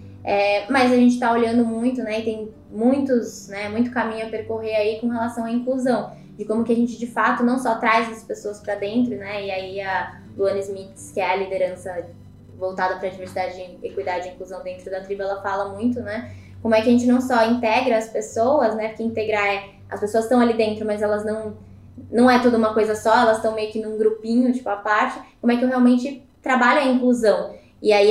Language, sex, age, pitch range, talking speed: Portuguese, female, 10-29, 215-245 Hz, 225 wpm